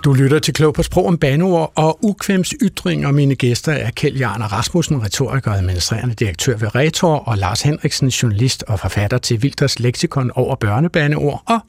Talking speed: 180 wpm